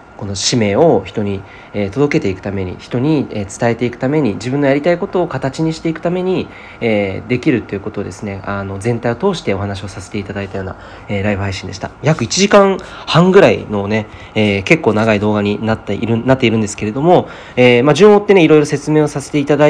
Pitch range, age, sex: 100-135 Hz, 40-59, male